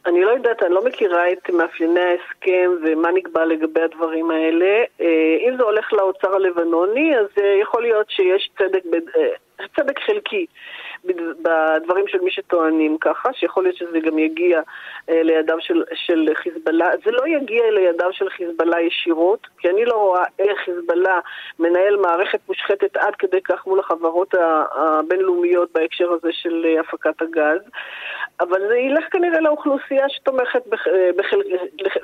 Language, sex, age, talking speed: Hebrew, female, 30-49, 145 wpm